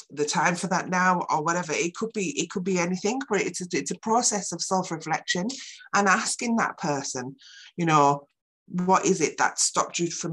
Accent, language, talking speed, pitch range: British, English, 200 wpm, 150-200 Hz